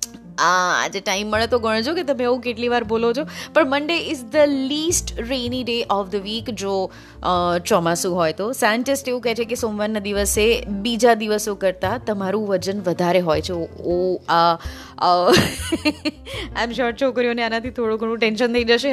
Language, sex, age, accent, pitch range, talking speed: Gujarati, female, 20-39, native, 200-265 Hz, 160 wpm